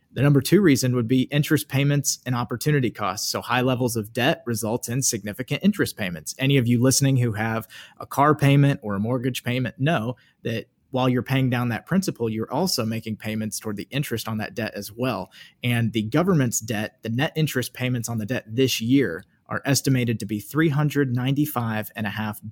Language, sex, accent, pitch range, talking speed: English, male, American, 115-140 Hz, 190 wpm